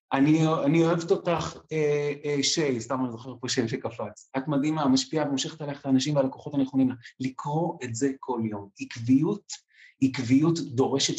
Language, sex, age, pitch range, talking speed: Hebrew, male, 30-49, 120-145 Hz, 155 wpm